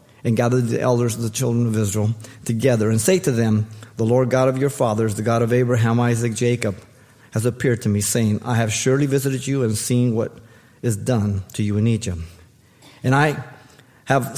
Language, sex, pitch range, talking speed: English, male, 115-140 Hz, 200 wpm